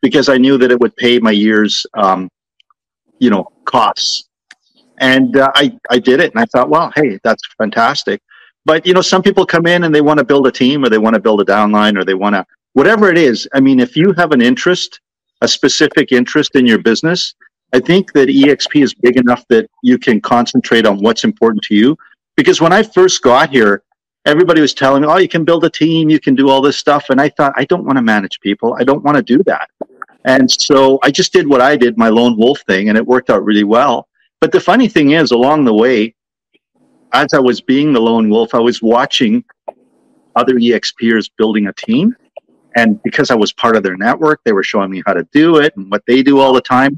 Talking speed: 230 wpm